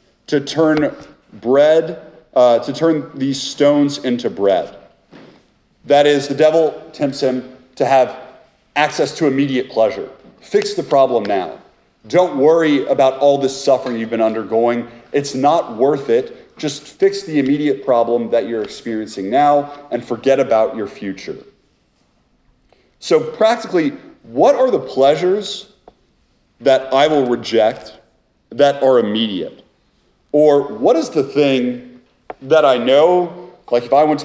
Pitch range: 120-155 Hz